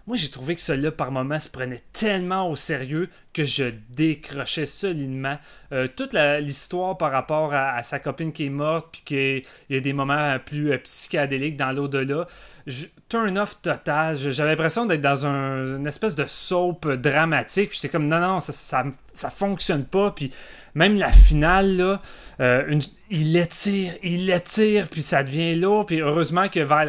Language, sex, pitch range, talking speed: French, male, 135-165 Hz, 185 wpm